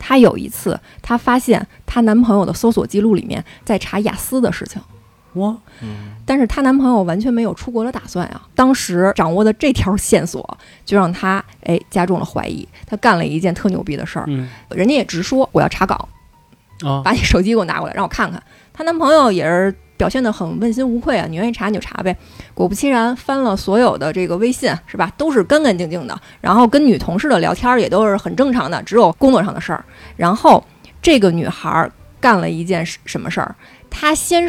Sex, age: female, 20-39